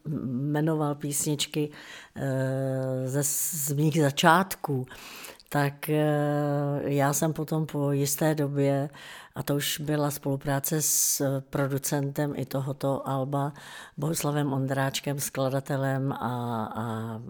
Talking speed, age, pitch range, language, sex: 95 wpm, 60-79, 140-155 Hz, Czech, female